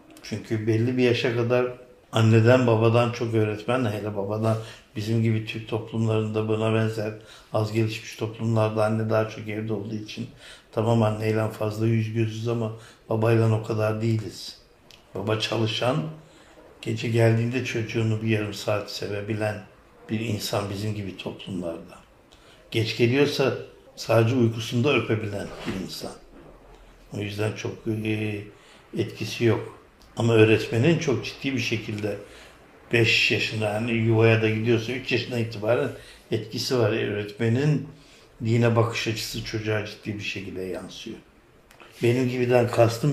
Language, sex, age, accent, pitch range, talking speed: Turkish, male, 60-79, native, 110-120 Hz, 125 wpm